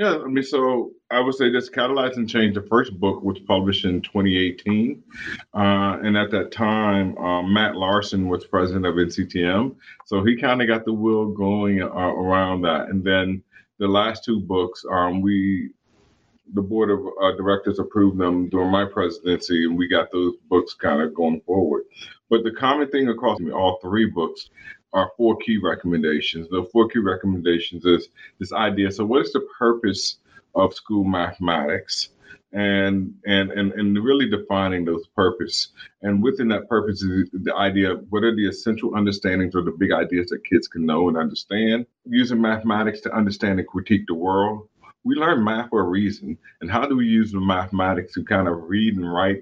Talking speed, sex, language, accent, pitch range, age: 190 wpm, male, English, American, 95-110 Hz, 30-49